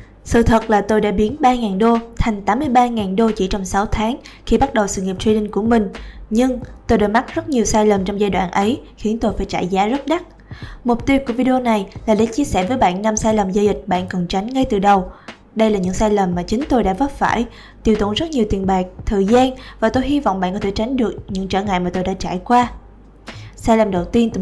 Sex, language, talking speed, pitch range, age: female, Vietnamese, 260 wpm, 200-240 Hz, 20-39